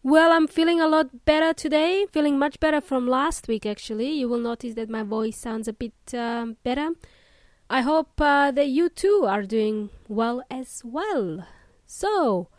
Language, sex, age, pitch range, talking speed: English, female, 20-39, 230-300 Hz, 175 wpm